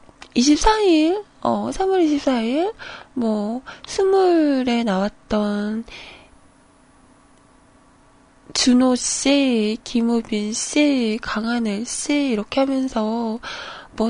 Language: Korean